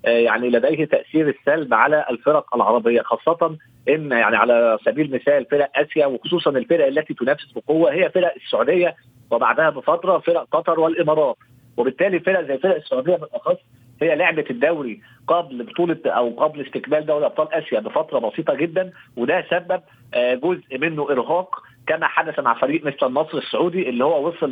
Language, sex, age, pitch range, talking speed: Arabic, male, 40-59, 130-175 Hz, 155 wpm